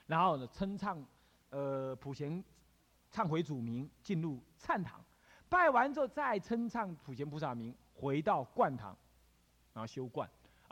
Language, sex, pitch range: Chinese, male, 125-200 Hz